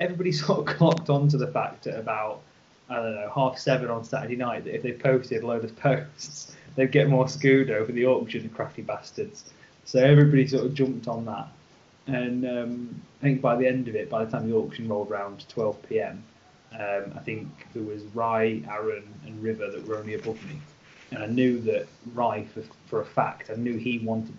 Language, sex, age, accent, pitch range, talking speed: English, male, 20-39, British, 110-135 Hz, 215 wpm